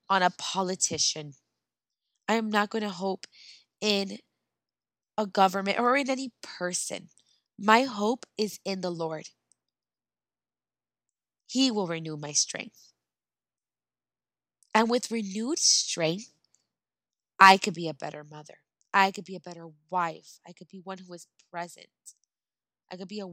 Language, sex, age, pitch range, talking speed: English, female, 20-39, 155-200 Hz, 140 wpm